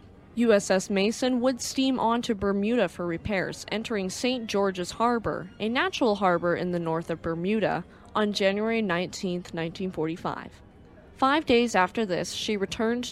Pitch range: 175-235 Hz